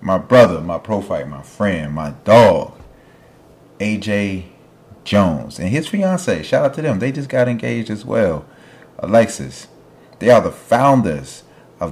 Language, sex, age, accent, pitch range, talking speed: English, male, 30-49, American, 90-115 Hz, 145 wpm